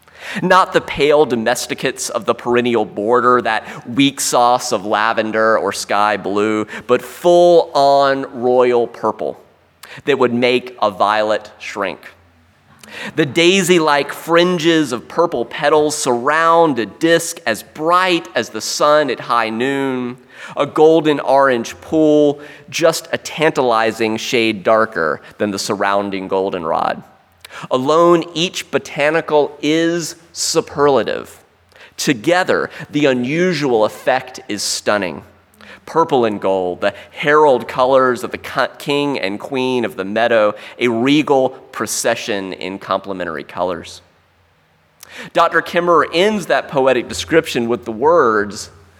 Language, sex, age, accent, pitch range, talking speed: English, male, 30-49, American, 110-155 Hz, 115 wpm